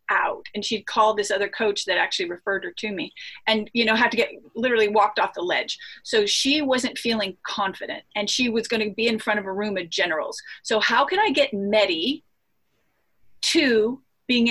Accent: American